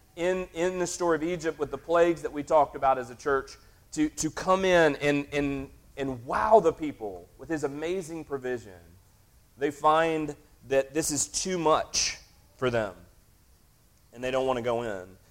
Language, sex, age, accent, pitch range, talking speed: English, male, 30-49, American, 120-160 Hz, 180 wpm